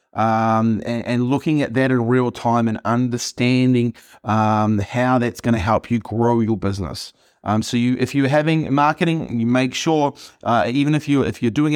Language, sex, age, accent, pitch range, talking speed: English, male, 30-49, Australian, 115-135 Hz, 195 wpm